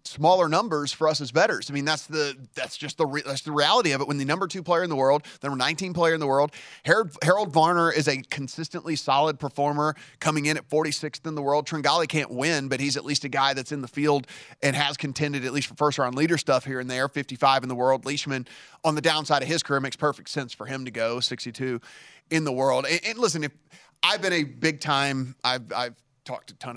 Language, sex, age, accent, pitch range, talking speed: English, male, 30-49, American, 130-155 Hz, 240 wpm